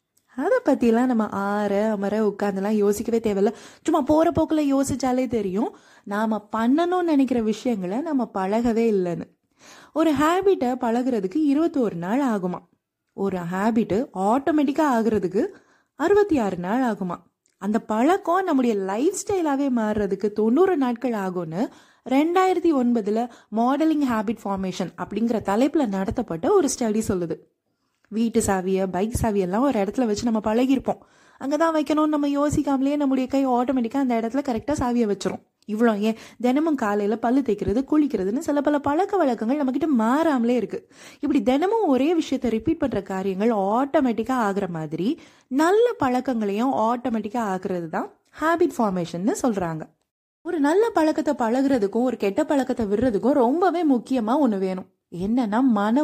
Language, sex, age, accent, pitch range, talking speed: Tamil, female, 20-39, native, 210-290 Hz, 130 wpm